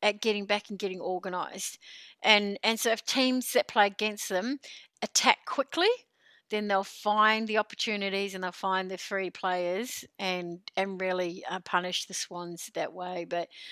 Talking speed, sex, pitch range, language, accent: 165 wpm, female, 190-250 Hz, English, Australian